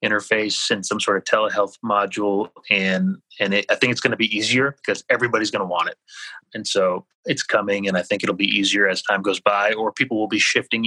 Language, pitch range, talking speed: English, 105-135 Hz, 230 wpm